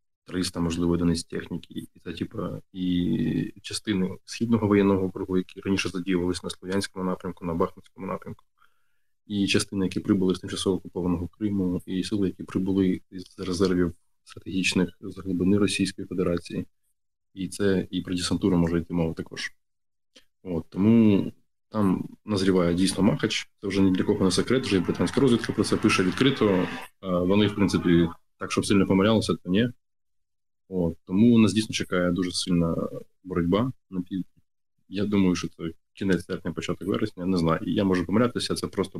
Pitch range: 90-100 Hz